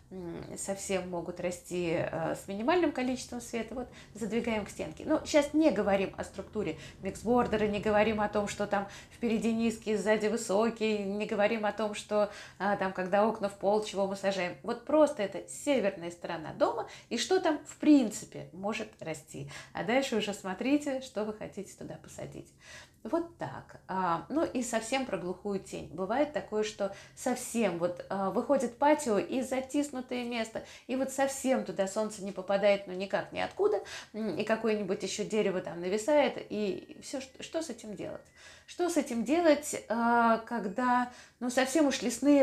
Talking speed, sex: 160 wpm, female